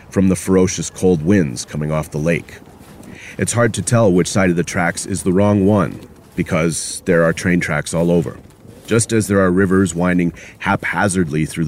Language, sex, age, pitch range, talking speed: English, male, 30-49, 85-105 Hz, 185 wpm